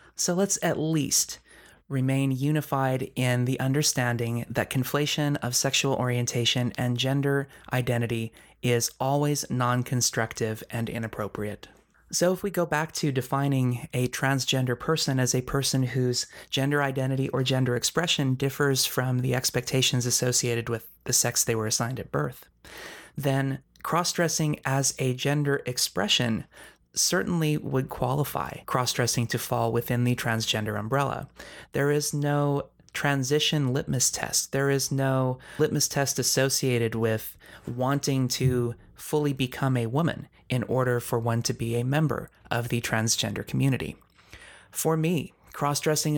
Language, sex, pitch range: English, male, 120-145 Hz